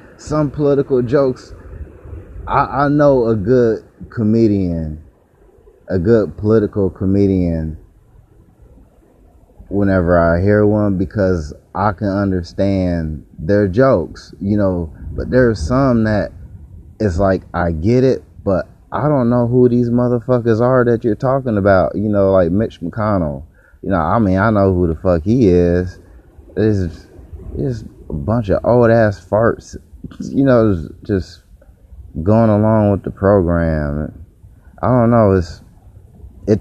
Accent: American